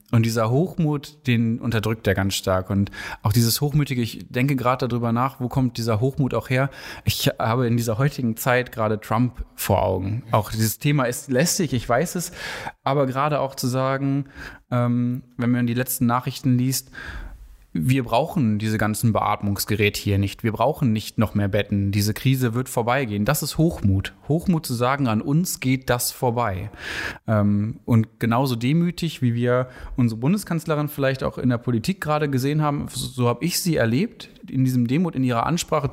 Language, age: German, 20-39